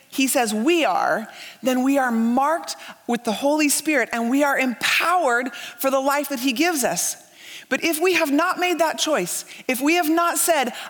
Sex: female